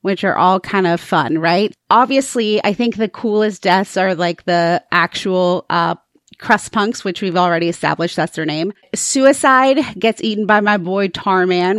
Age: 30-49